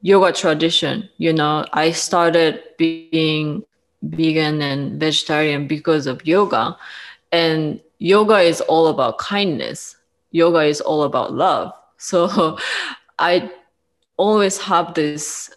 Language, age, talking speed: English, 20-39, 110 wpm